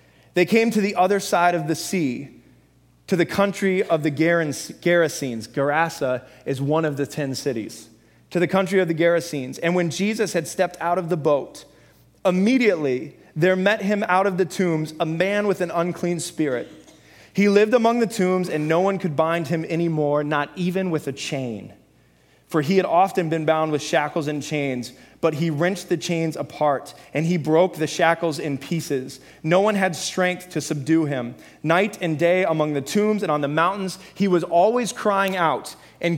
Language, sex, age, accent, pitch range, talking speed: English, male, 20-39, American, 150-190 Hz, 190 wpm